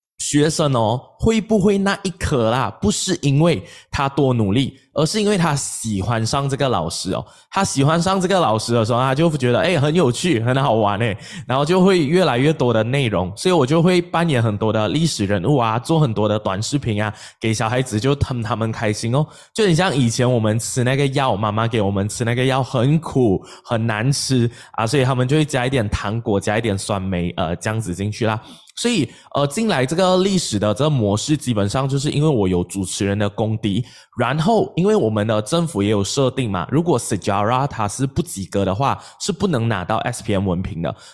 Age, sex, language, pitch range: 20-39, male, English, 105-150 Hz